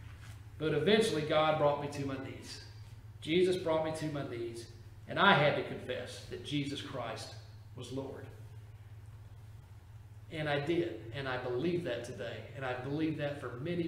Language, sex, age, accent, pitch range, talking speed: English, male, 40-59, American, 110-180 Hz, 165 wpm